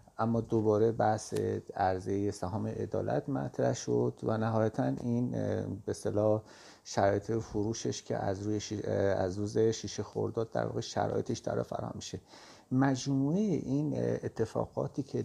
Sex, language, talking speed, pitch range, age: male, Persian, 125 wpm, 105-130 Hz, 50-69